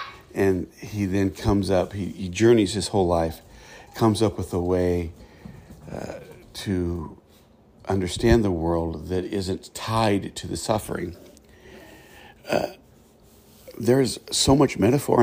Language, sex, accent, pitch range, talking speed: English, male, American, 90-105 Hz, 120 wpm